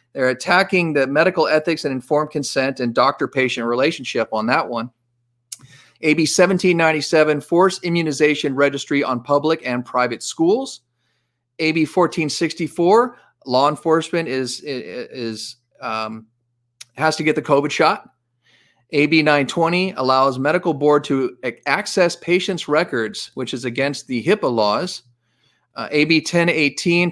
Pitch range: 125-160 Hz